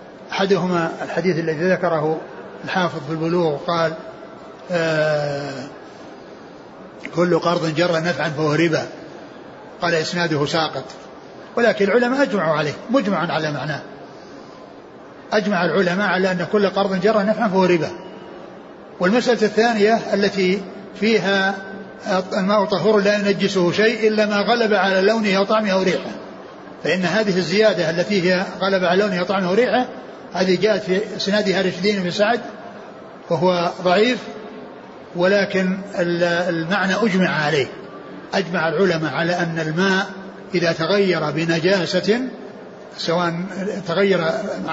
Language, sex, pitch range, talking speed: Arabic, male, 170-210 Hz, 115 wpm